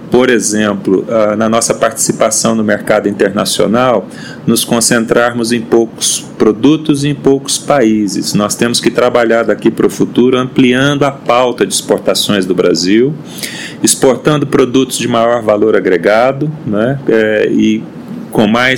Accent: Brazilian